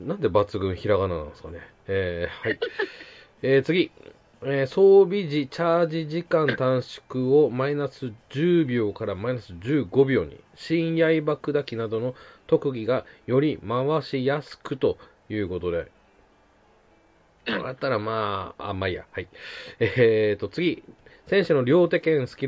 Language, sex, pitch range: Japanese, male, 110-150 Hz